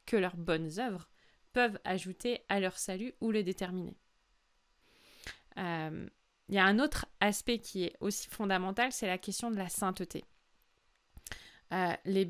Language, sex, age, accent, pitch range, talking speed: French, female, 20-39, French, 185-245 Hz, 145 wpm